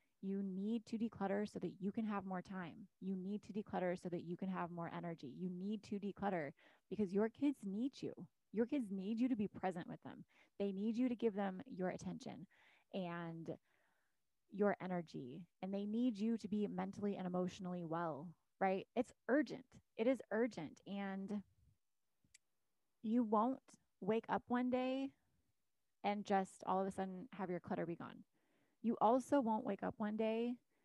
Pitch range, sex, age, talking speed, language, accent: 180-220 Hz, female, 20-39, 180 wpm, English, American